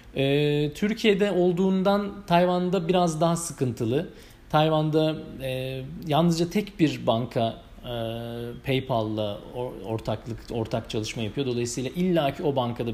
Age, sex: 40-59, male